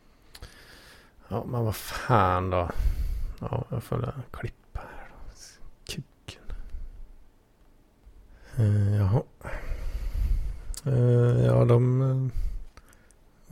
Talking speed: 85 wpm